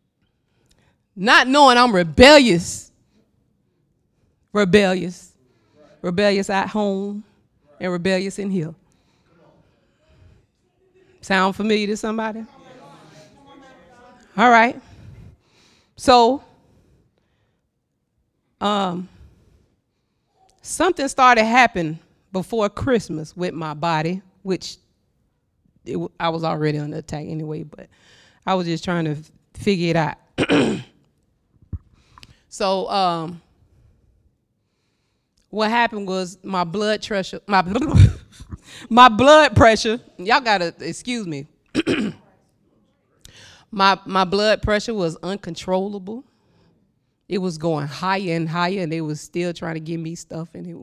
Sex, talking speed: female, 100 wpm